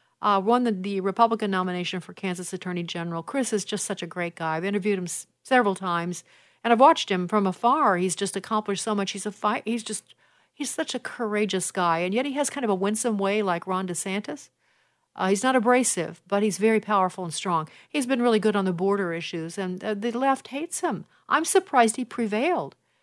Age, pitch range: 50-69, 185-225 Hz